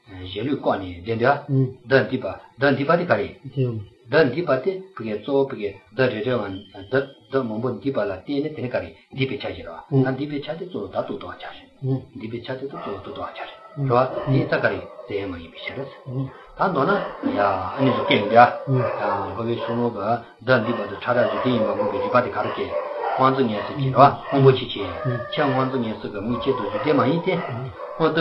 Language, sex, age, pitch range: English, male, 50-69, 120-140 Hz